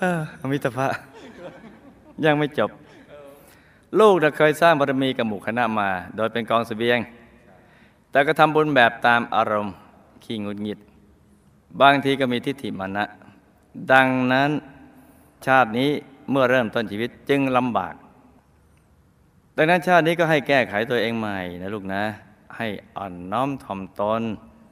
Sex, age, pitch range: male, 20-39, 95-120 Hz